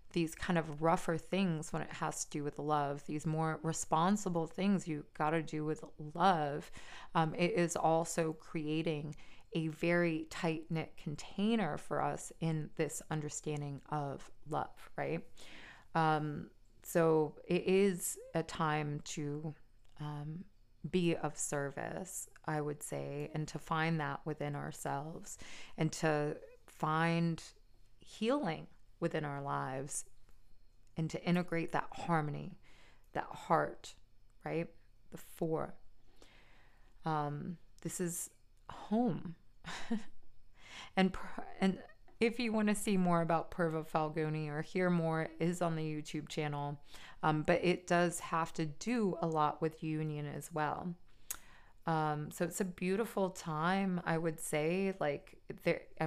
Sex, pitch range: female, 150-175 Hz